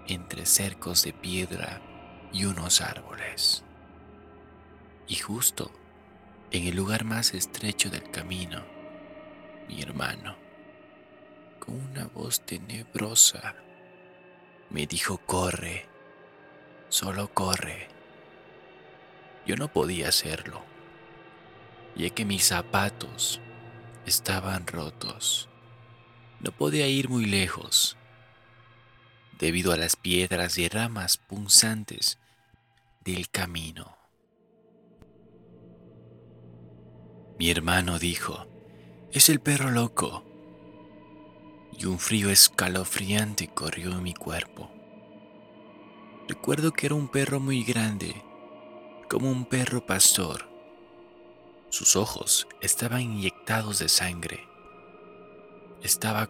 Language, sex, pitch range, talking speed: Spanish, male, 90-120 Hz, 90 wpm